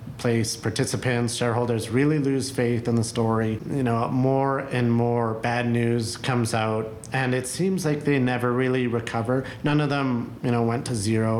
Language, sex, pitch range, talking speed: English, male, 115-135 Hz, 180 wpm